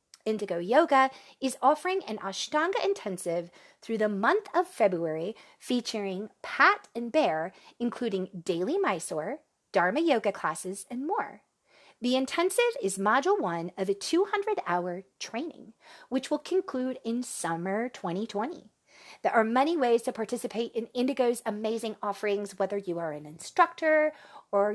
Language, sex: English, female